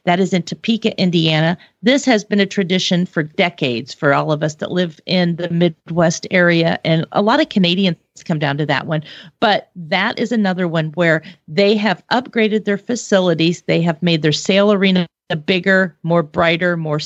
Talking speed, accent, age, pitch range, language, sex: 185 wpm, American, 40-59, 165-205 Hz, English, female